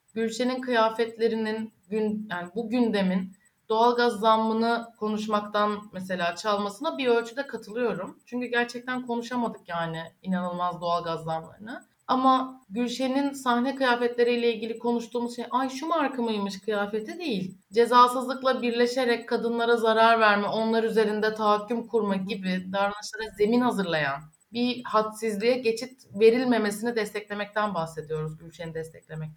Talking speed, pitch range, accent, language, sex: 115 wpm, 205-245 Hz, native, Turkish, female